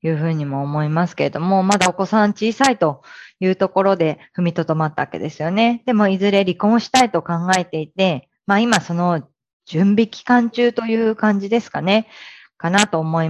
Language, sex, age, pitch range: Japanese, female, 20-39, 160-215 Hz